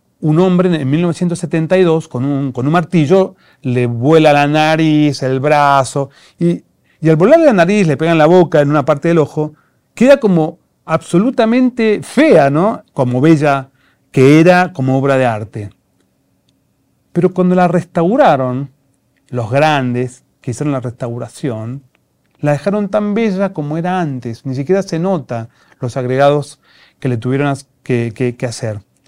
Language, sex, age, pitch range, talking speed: Spanish, male, 40-59, 135-185 Hz, 150 wpm